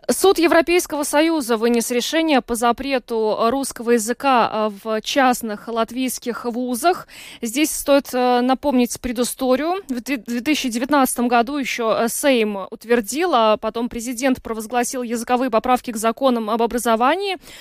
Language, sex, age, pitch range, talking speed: Russian, female, 20-39, 230-270 Hz, 110 wpm